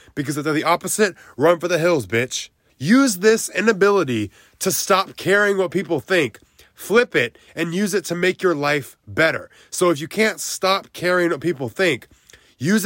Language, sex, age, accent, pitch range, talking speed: English, male, 20-39, American, 130-185 Hz, 180 wpm